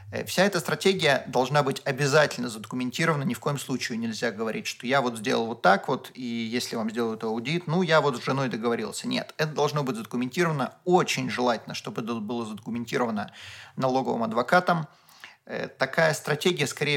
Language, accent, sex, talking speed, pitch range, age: Russian, native, male, 165 wpm, 125-185 Hz, 30-49